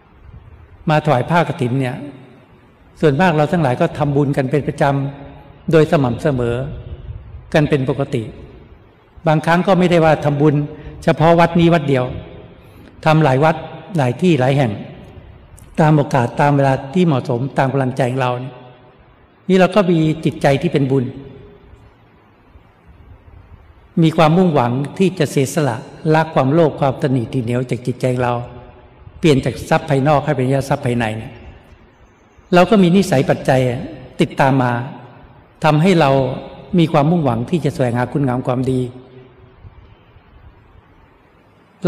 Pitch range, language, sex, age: 125-155 Hz, Thai, male, 60-79